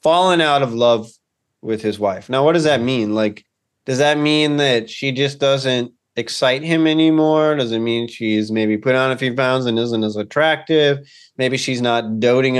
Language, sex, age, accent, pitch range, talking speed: English, male, 20-39, American, 120-160 Hz, 195 wpm